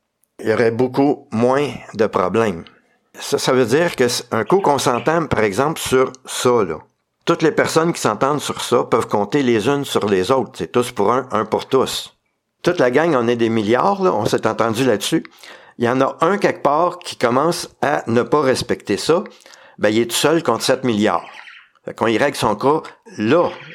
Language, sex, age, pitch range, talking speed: French, male, 60-79, 115-160 Hz, 210 wpm